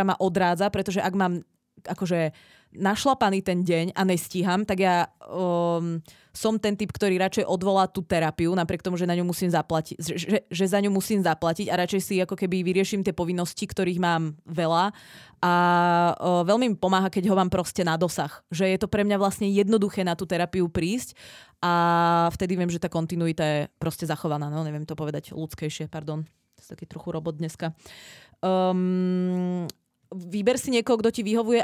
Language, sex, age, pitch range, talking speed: Czech, female, 20-39, 170-200 Hz, 180 wpm